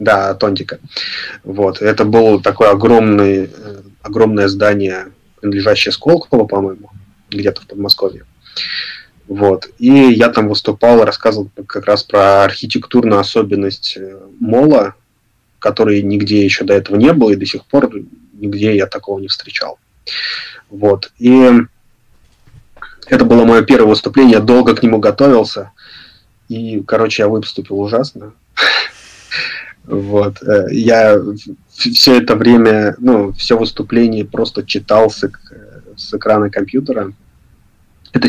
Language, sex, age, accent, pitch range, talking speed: Russian, male, 20-39, native, 100-115 Hz, 115 wpm